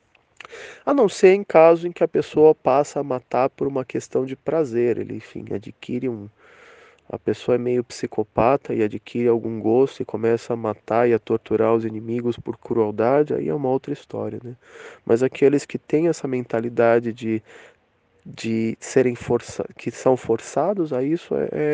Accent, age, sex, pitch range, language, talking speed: Brazilian, 20-39, male, 120-165 Hz, English, 175 wpm